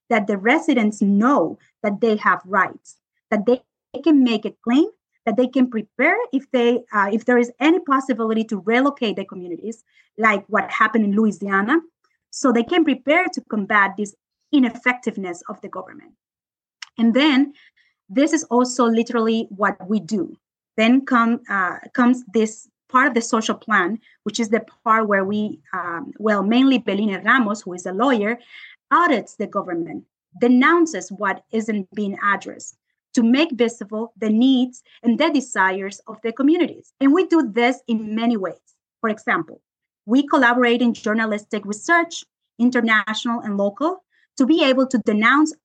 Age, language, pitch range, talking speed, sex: 30-49, English, 215-260 Hz, 160 wpm, female